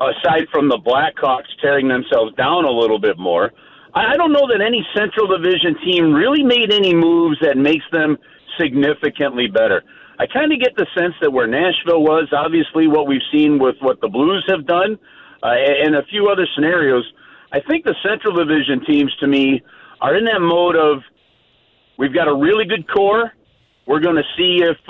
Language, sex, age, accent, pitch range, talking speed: English, male, 50-69, American, 135-185 Hz, 190 wpm